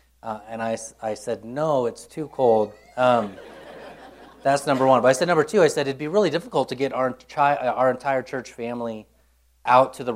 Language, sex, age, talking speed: English, male, 30-49, 205 wpm